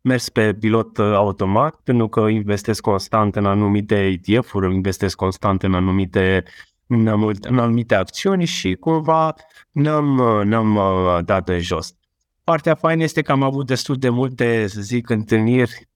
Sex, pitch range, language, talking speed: male, 105-125 Hz, Romanian, 145 wpm